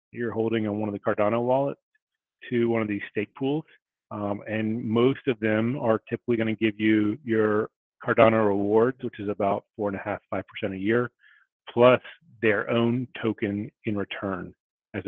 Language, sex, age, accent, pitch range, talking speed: English, male, 30-49, American, 105-120 Hz, 185 wpm